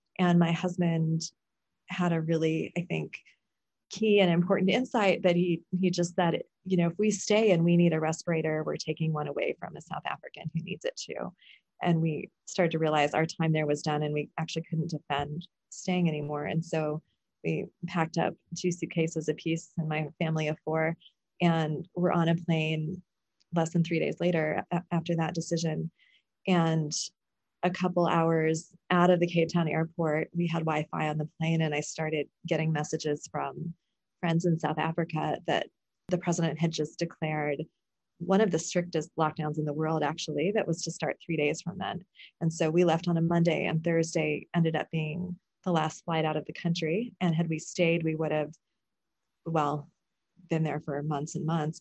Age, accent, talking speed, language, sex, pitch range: 20-39, American, 190 wpm, English, female, 155-175 Hz